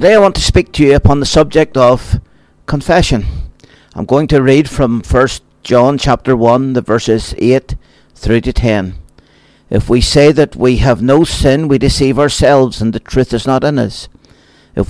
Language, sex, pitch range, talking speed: English, male, 110-145 Hz, 185 wpm